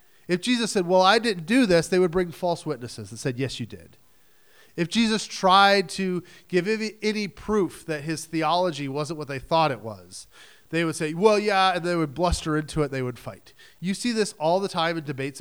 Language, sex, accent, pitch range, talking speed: English, male, American, 130-185 Hz, 220 wpm